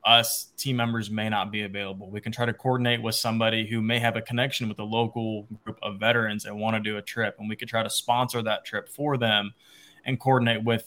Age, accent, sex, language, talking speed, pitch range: 20-39, American, male, English, 245 wpm, 110-125 Hz